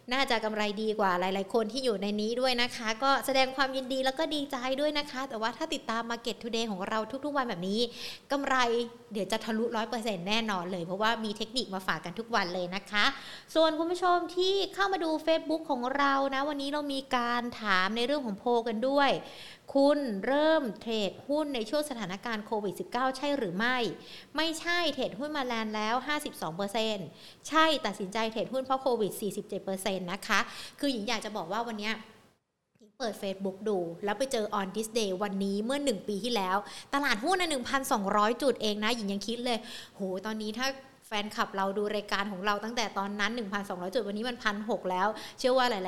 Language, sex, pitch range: Thai, female, 210-265 Hz